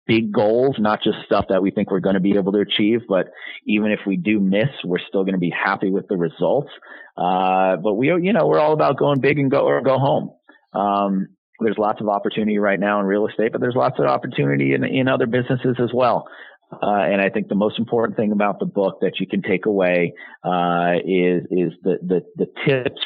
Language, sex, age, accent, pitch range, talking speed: English, male, 30-49, American, 90-110 Hz, 230 wpm